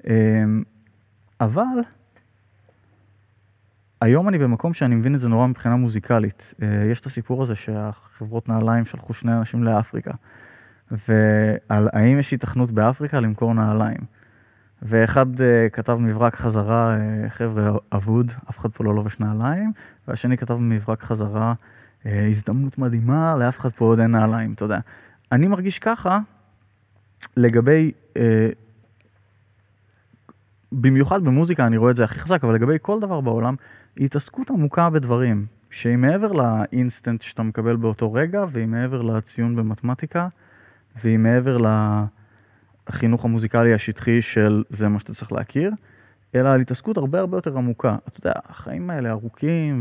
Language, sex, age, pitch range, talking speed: Hebrew, male, 20-39, 110-130 Hz, 135 wpm